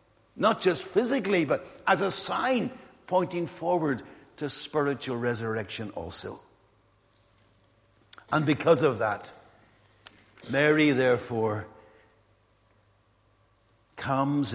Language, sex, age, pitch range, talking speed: English, male, 70-89, 105-145 Hz, 85 wpm